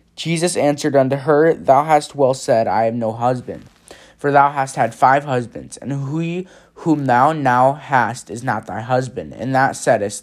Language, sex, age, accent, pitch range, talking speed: English, male, 20-39, American, 120-155 Hz, 180 wpm